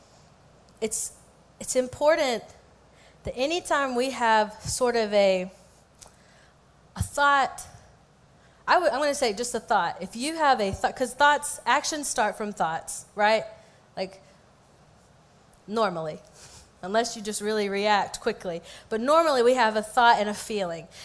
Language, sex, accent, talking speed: English, female, American, 135 wpm